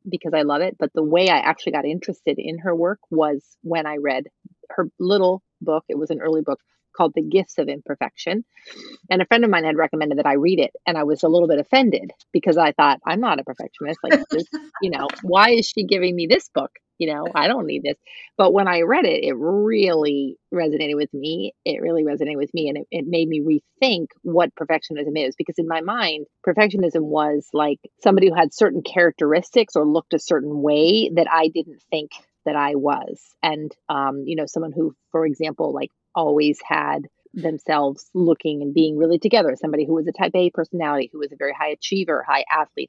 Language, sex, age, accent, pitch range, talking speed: English, female, 30-49, American, 150-180 Hz, 215 wpm